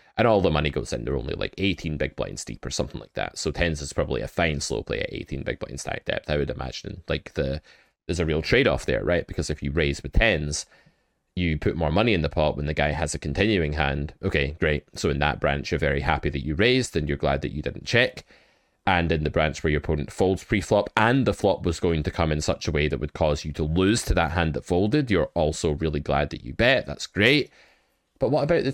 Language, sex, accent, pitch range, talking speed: English, male, British, 75-100 Hz, 260 wpm